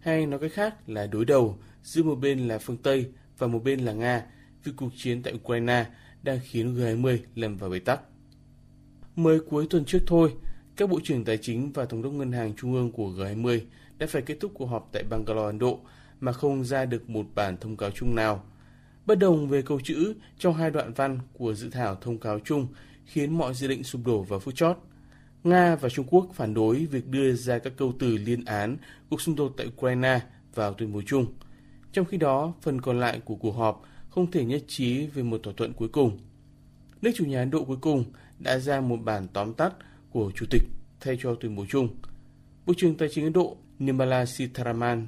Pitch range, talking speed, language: 115-145 Hz, 220 wpm, Vietnamese